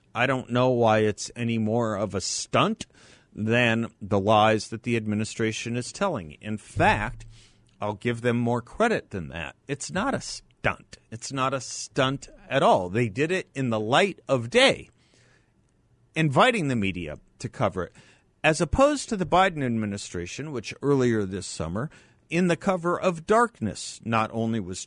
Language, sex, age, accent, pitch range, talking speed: English, male, 50-69, American, 105-145 Hz, 165 wpm